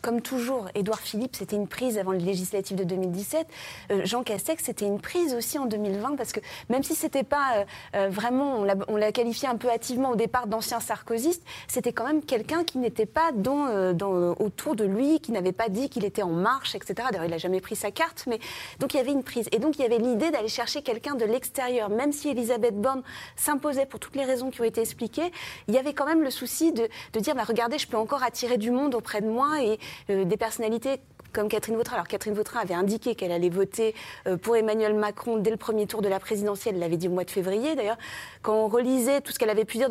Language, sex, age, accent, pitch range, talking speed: French, female, 30-49, French, 200-255 Hz, 245 wpm